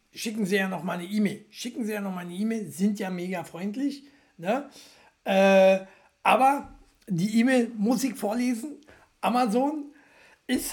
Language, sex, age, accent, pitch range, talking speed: German, male, 60-79, German, 180-245 Hz, 150 wpm